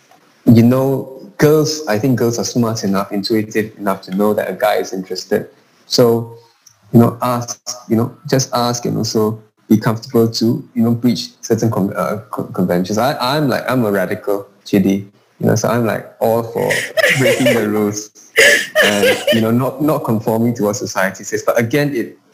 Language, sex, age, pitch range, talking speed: English, male, 20-39, 105-120 Hz, 185 wpm